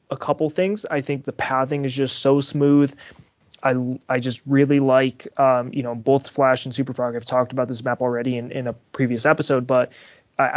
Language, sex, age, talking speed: English, male, 20-39, 205 wpm